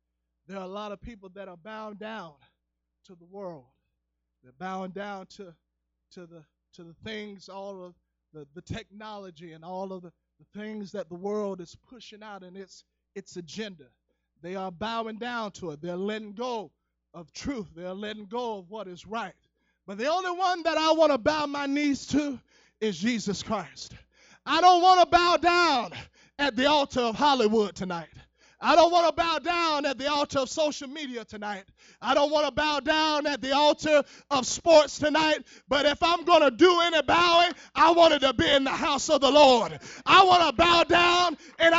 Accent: American